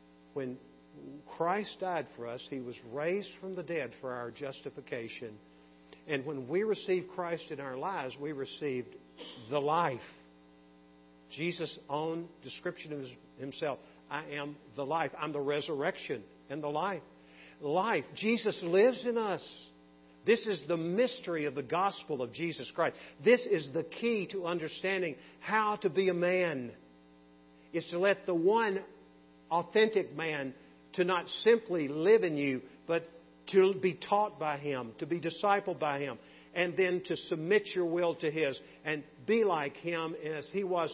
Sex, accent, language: male, American, English